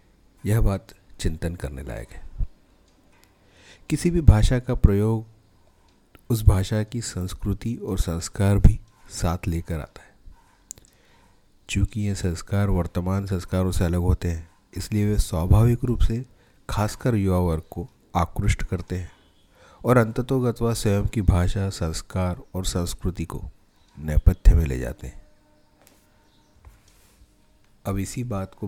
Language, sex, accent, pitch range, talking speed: Hindi, male, native, 90-105 Hz, 130 wpm